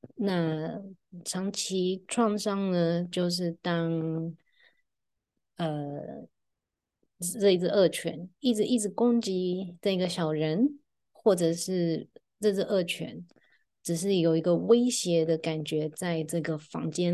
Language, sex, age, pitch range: Chinese, female, 20-39, 160-190 Hz